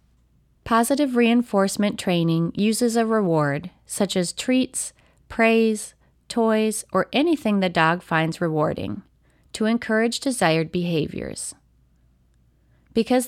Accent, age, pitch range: American, 30-49, 165-225 Hz